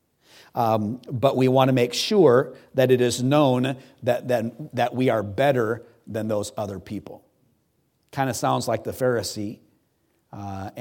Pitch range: 105-125 Hz